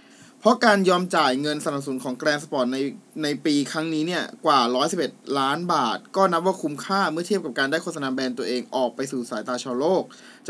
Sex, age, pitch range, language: male, 20-39, 140-205 Hz, Thai